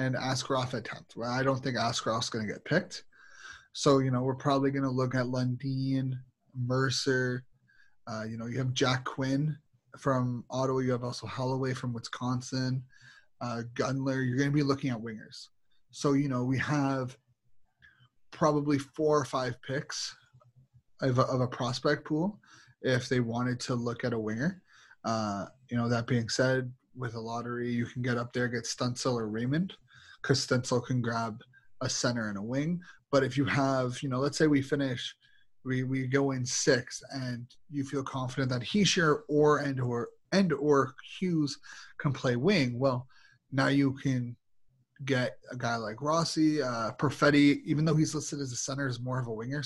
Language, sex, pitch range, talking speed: English, male, 125-140 Hz, 185 wpm